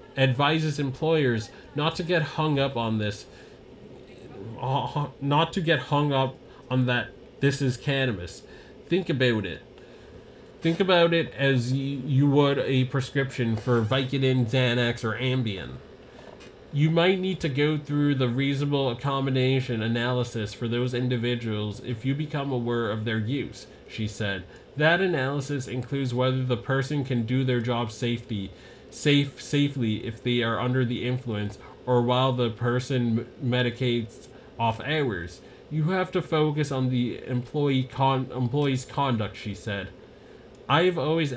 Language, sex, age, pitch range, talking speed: English, male, 30-49, 120-145 Hz, 140 wpm